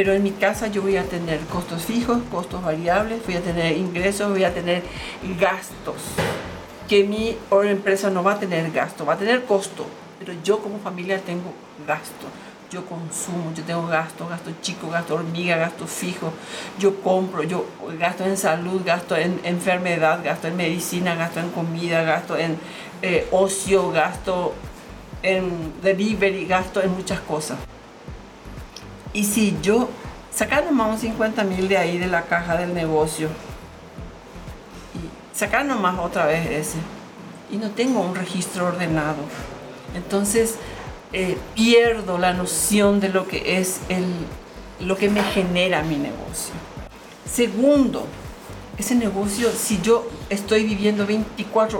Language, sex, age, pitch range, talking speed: Spanish, female, 50-69, 170-205 Hz, 145 wpm